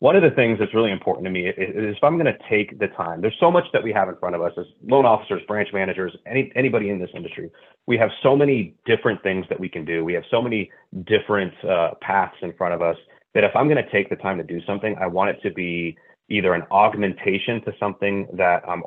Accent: American